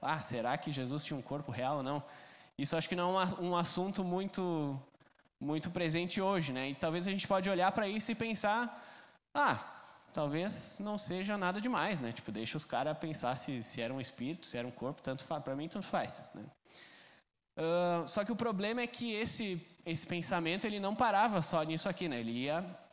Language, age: Portuguese, 10-29